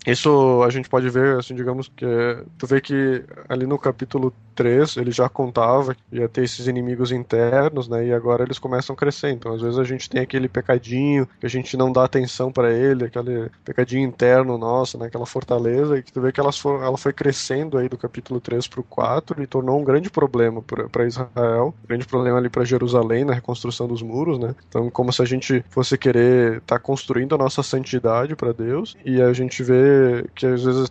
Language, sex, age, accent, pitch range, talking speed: Portuguese, male, 20-39, Brazilian, 120-135 Hz, 215 wpm